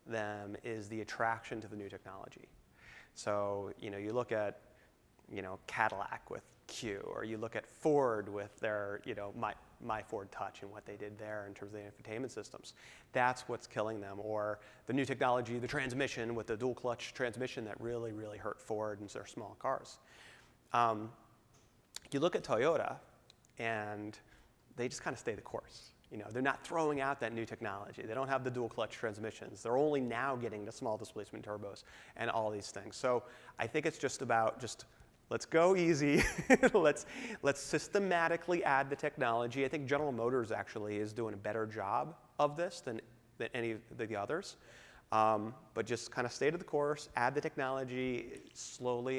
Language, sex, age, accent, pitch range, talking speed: English, male, 30-49, American, 110-130 Hz, 190 wpm